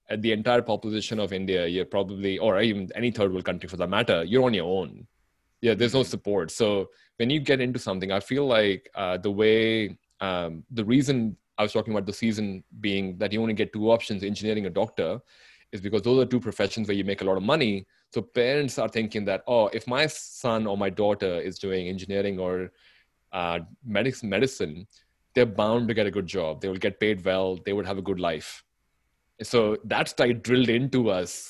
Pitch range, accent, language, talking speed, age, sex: 100-120 Hz, Indian, English, 210 wpm, 30-49, male